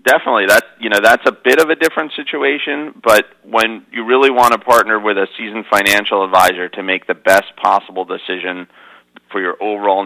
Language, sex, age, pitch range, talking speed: English, male, 30-49, 95-110 Hz, 190 wpm